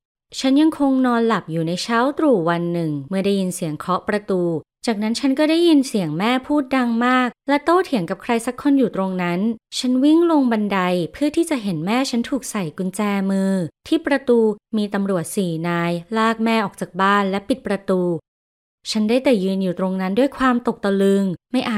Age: 20-39